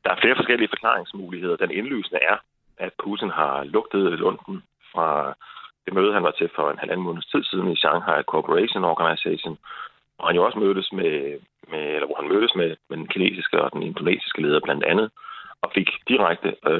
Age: 30-49